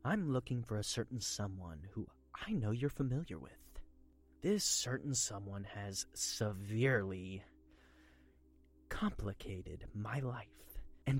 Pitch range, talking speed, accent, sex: 95-145 Hz, 115 wpm, American, male